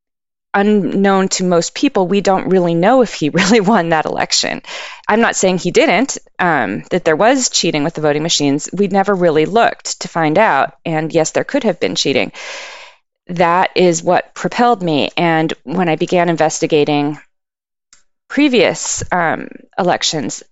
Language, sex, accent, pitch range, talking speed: English, female, American, 155-215 Hz, 160 wpm